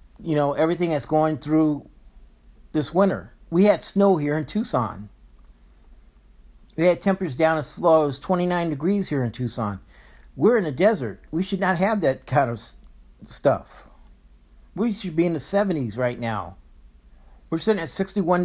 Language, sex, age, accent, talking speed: English, male, 50-69, American, 165 wpm